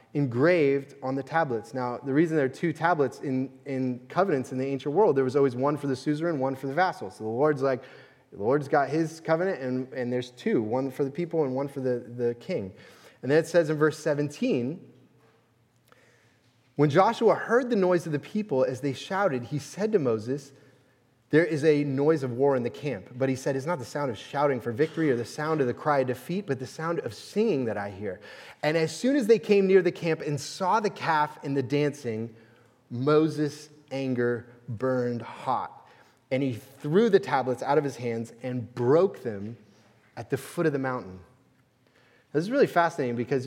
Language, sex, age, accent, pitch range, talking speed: English, male, 30-49, American, 125-150 Hz, 210 wpm